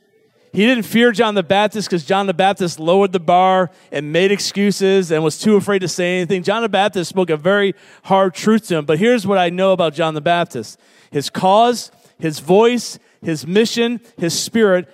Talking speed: 200 wpm